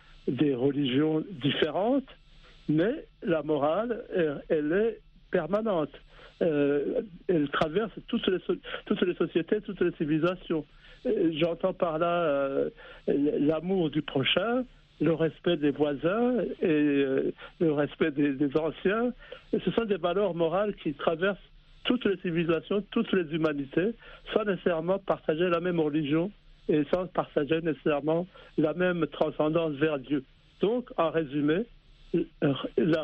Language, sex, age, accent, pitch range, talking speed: French, male, 60-79, French, 150-185 Hz, 135 wpm